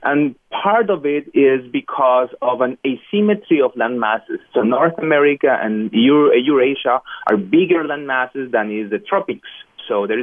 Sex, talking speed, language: male, 160 wpm, English